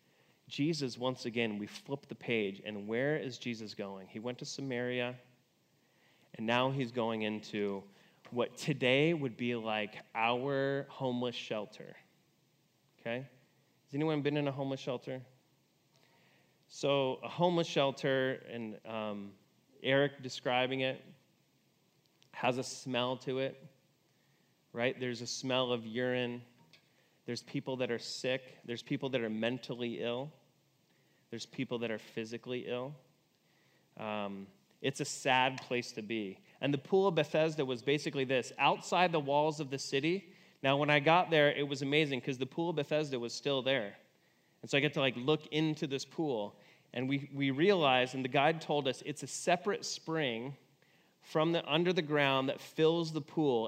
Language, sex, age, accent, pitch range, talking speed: English, male, 30-49, American, 120-145 Hz, 160 wpm